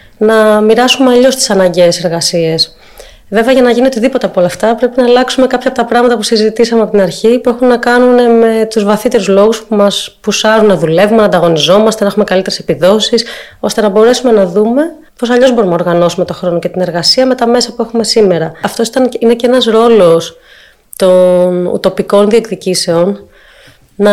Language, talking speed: Greek, 185 wpm